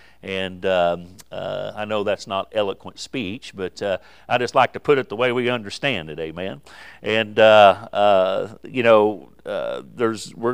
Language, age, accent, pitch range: English, 50-69, American, 100-125 Hz